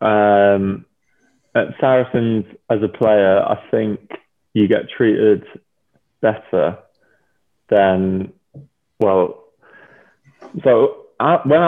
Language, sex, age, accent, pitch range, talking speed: English, male, 20-39, British, 100-115 Hz, 80 wpm